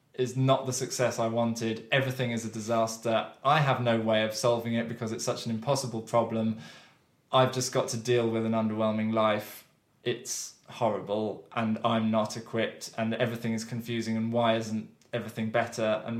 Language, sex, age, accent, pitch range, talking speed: English, male, 20-39, British, 110-135 Hz, 180 wpm